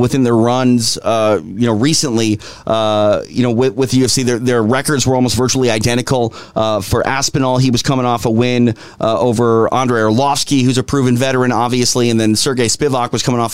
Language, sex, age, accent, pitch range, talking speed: English, male, 30-49, American, 110-135 Hz, 200 wpm